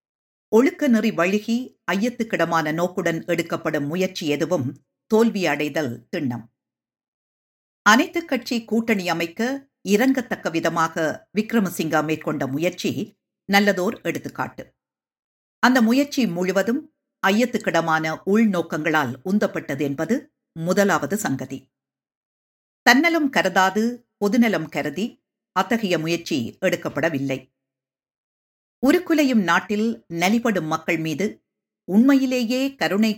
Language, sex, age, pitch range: Tamil, female, 50-69, 160-225 Hz